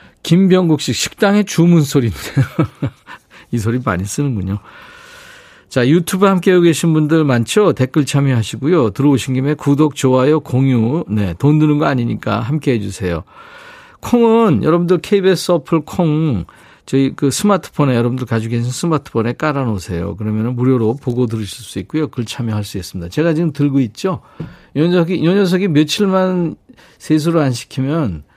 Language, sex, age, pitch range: Korean, male, 50-69, 110-170 Hz